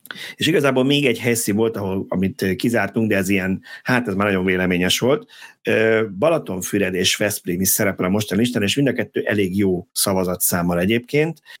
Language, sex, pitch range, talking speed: Hungarian, male, 95-115 Hz, 170 wpm